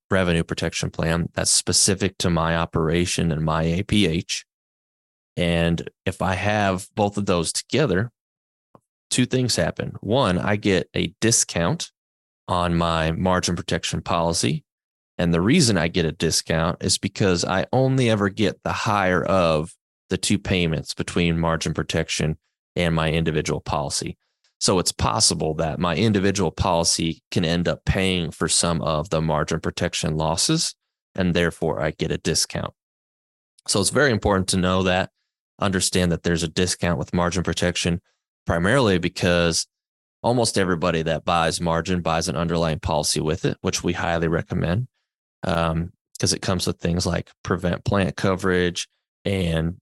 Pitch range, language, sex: 80-95 Hz, English, male